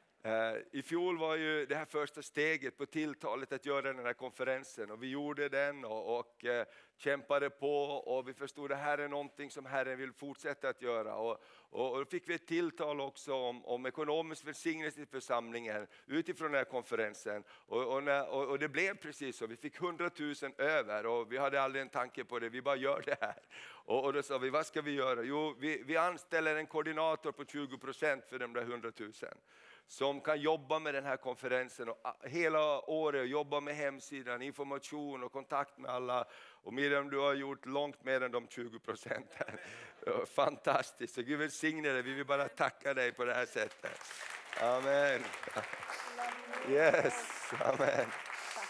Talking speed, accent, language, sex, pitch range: 185 wpm, native, Swedish, male, 130-155 Hz